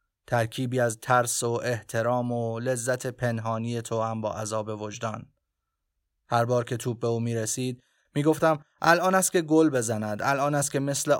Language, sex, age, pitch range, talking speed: Persian, male, 30-49, 110-135 Hz, 170 wpm